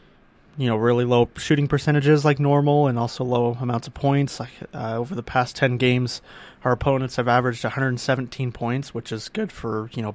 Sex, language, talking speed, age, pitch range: male, English, 195 wpm, 20-39, 115-135 Hz